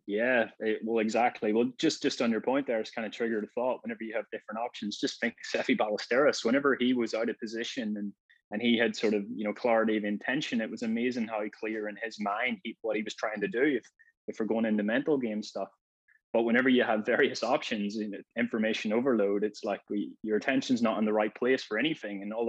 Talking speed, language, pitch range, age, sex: 245 wpm, English, 105-115 Hz, 20-39, male